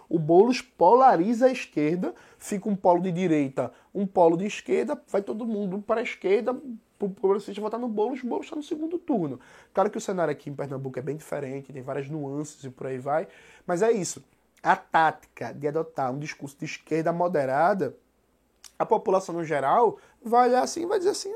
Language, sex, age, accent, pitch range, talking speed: Portuguese, male, 20-39, Brazilian, 150-245 Hz, 200 wpm